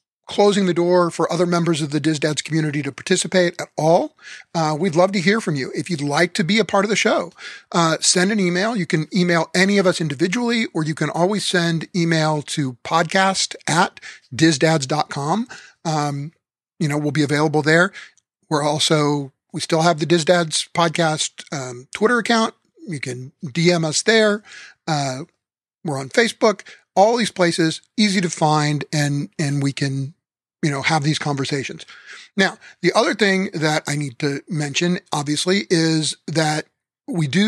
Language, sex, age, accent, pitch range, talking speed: English, male, 40-59, American, 150-180 Hz, 175 wpm